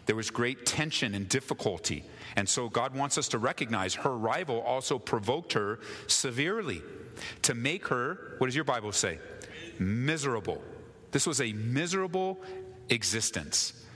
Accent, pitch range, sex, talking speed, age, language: American, 100-140 Hz, male, 140 wpm, 40-59, English